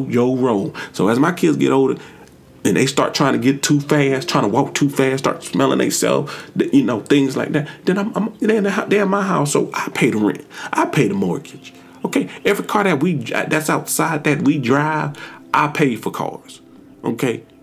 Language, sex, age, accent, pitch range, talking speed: English, male, 30-49, American, 110-145 Hz, 215 wpm